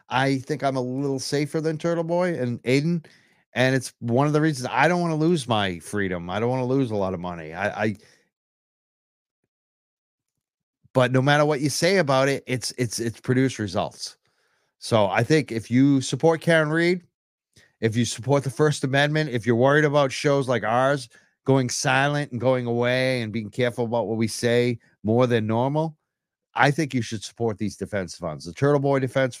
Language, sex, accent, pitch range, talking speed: English, male, American, 105-140 Hz, 195 wpm